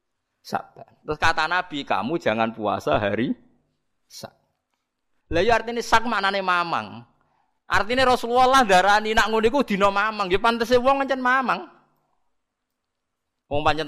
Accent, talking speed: native, 140 wpm